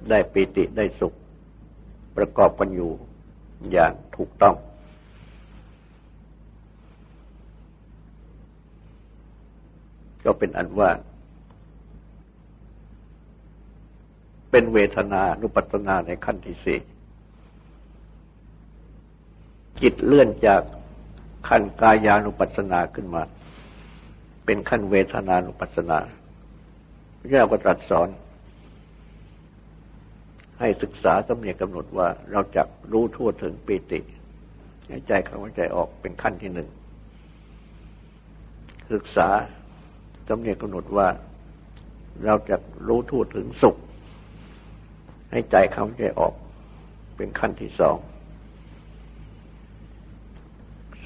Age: 60-79